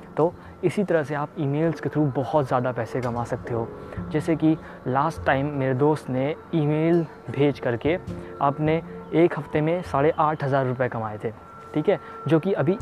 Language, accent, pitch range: Hindi, native, 130-155 Hz